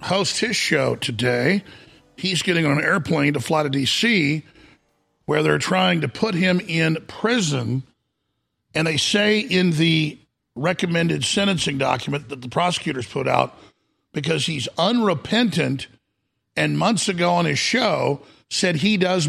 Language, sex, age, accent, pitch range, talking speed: English, male, 50-69, American, 150-195 Hz, 145 wpm